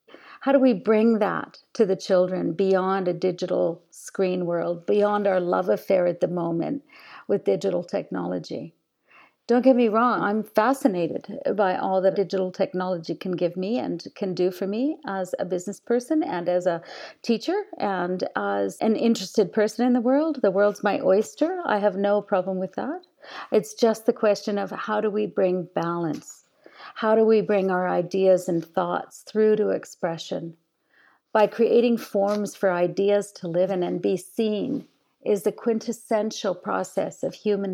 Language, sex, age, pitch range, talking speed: English, female, 50-69, 185-220 Hz, 170 wpm